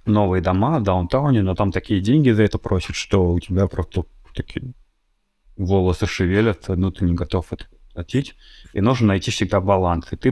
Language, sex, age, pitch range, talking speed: Russian, male, 20-39, 90-110 Hz, 180 wpm